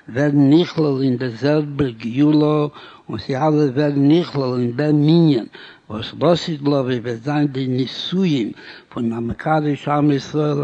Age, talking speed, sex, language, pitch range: 60-79, 170 wpm, male, Hebrew, 130-150 Hz